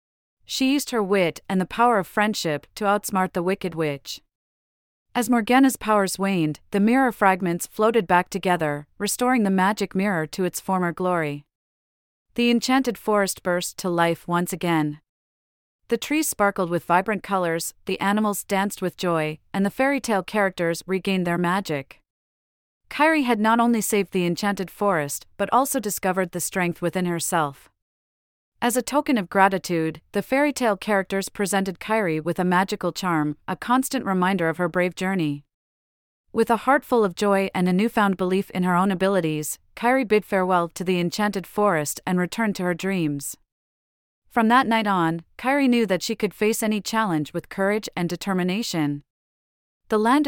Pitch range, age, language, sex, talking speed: 170-210 Hz, 40-59, English, female, 165 wpm